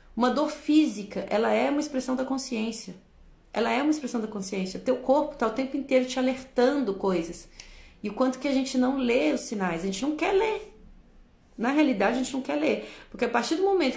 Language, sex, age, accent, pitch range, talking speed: Portuguese, female, 30-49, Brazilian, 195-260 Hz, 225 wpm